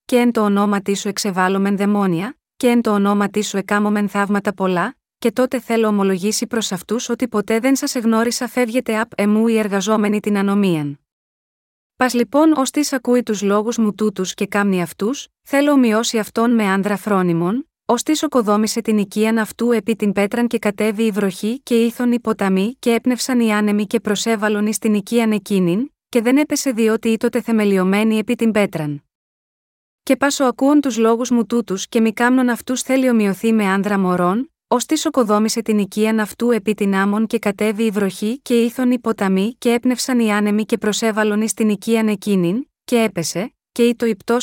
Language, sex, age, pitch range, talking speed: Greek, female, 20-39, 205-240 Hz, 180 wpm